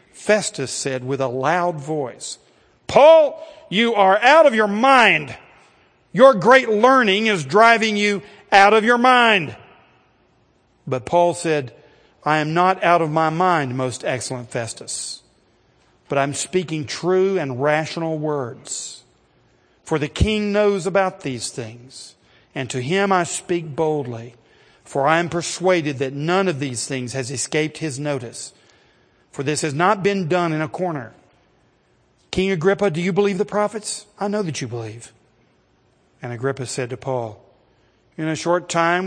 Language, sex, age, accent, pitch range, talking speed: English, male, 50-69, American, 130-185 Hz, 150 wpm